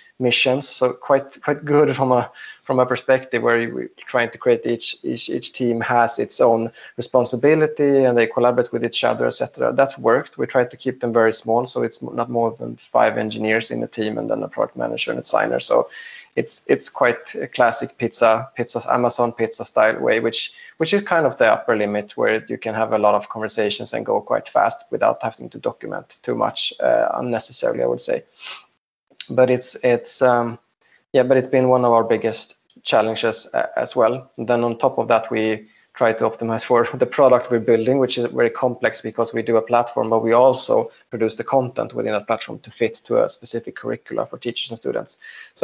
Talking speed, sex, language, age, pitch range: 210 wpm, male, English, 20-39, 115-130 Hz